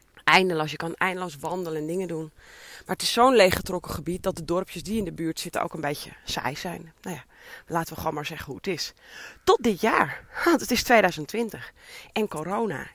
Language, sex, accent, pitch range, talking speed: Dutch, female, Dutch, 165-225 Hz, 215 wpm